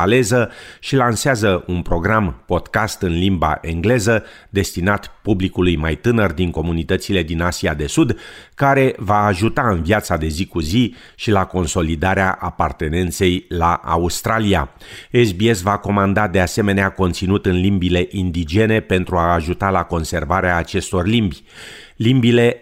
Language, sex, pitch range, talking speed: Romanian, male, 90-110 Hz, 135 wpm